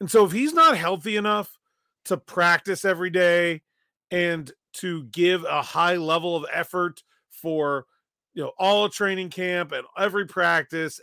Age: 30-49